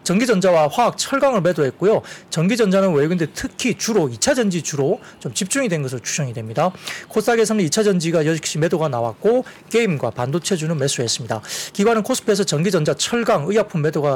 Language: Korean